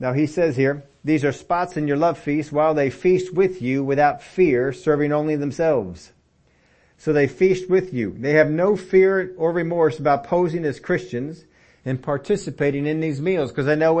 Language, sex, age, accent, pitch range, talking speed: English, male, 40-59, American, 135-170 Hz, 190 wpm